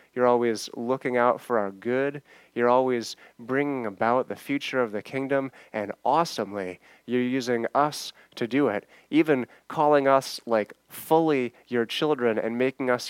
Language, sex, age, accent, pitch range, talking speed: English, male, 30-49, American, 110-135 Hz, 155 wpm